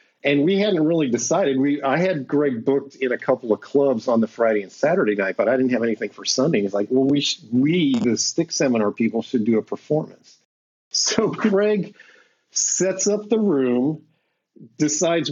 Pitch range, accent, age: 125-170 Hz, American, 50-69